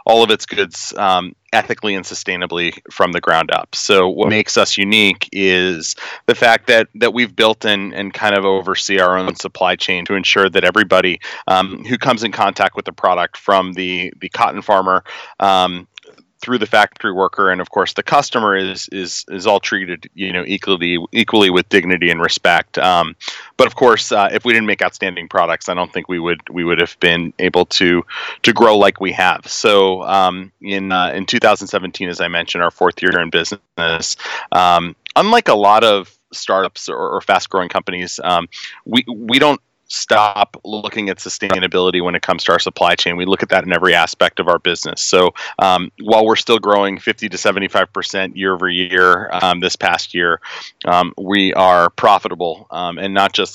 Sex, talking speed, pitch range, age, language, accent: male, 195 wpm, 90-100 Hz, 30-49, English, American